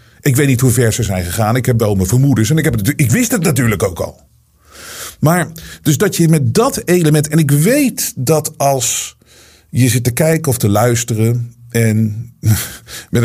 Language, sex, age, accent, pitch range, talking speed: Dutch, male, 50-69, Dutch, 110-145 Hz, 185 wpm